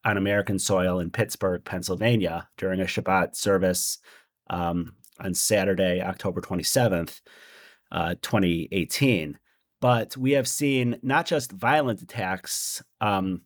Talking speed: 115 wpm